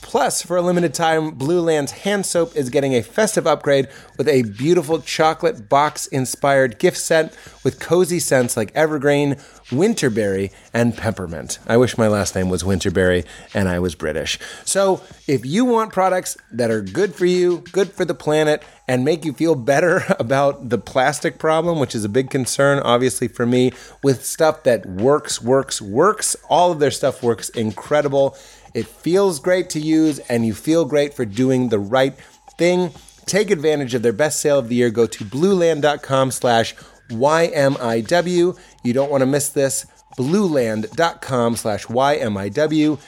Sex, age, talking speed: male, 30-49, 165 wpm